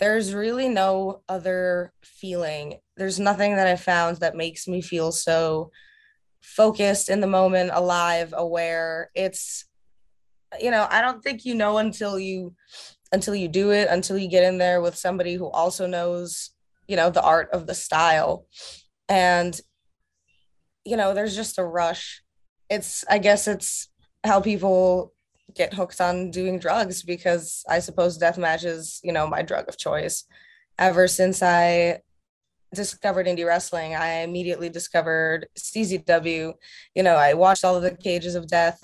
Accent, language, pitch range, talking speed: American, English, 170-195 Hz, 155 wpm